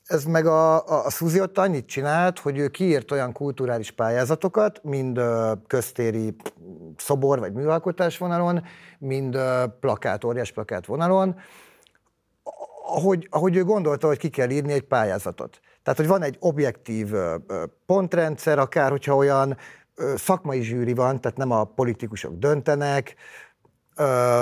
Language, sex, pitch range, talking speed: Hungarian, male, 120-160 Hz, 130 wpm